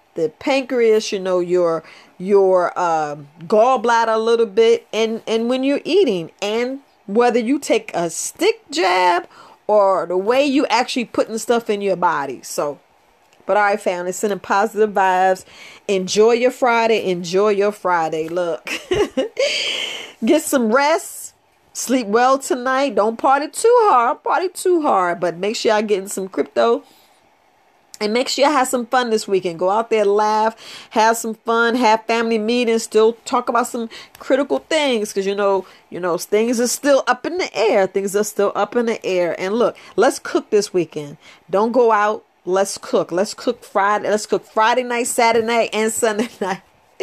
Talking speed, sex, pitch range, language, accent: 170 wpm, female, 190-245 Hz, English, American